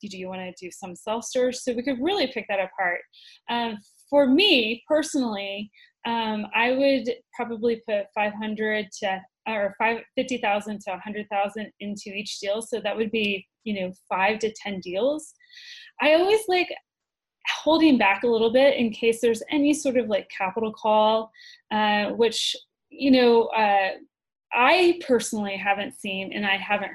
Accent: American